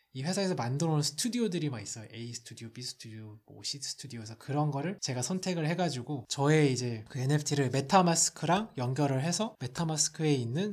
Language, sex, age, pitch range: Korean, male, 20-39, 125-165 Hz